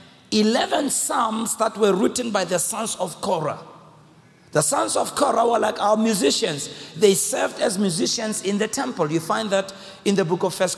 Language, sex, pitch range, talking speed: English, male, 170-220 Hz, 185 wpm